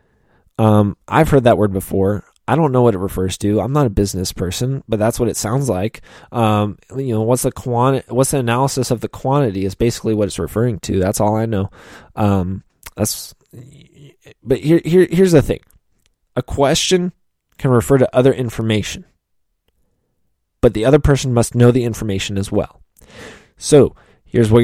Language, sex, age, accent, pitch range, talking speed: English, male, 20-39, American, 105-135 Hz, 180 wpm